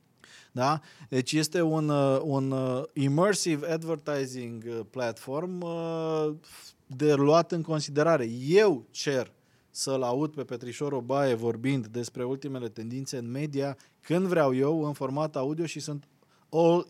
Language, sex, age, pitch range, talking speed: Romanian, male, 20-39, 130-160 Hz, 120 wpm